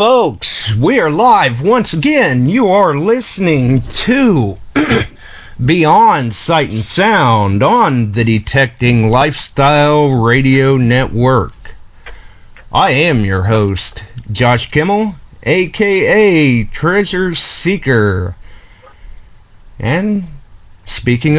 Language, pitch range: English, 100-165 Hz